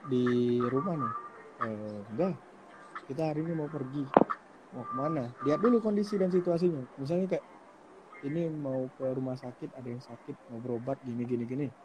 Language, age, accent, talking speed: Indonesian, 20-39, native, 155 wpm